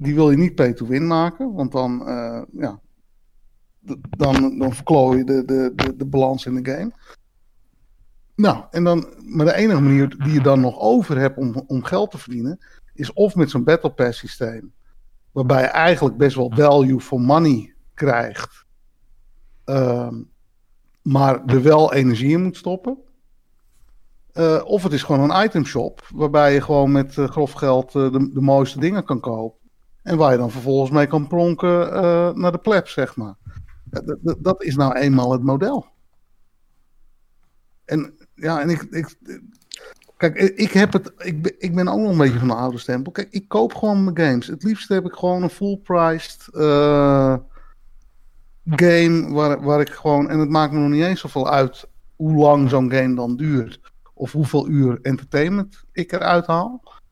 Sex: male